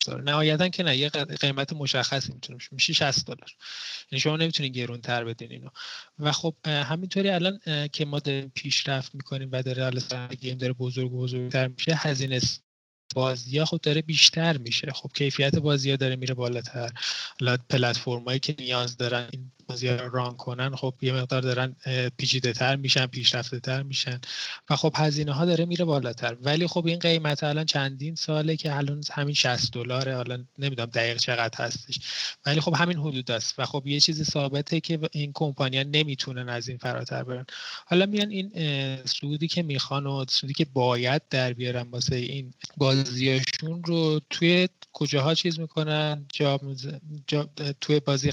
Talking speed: 165 wpm